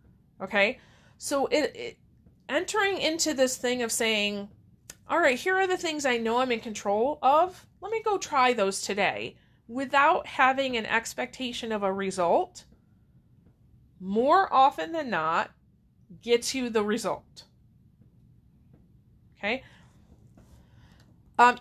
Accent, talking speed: American, 125 wpm